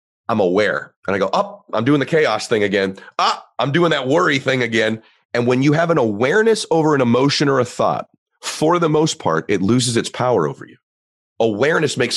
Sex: male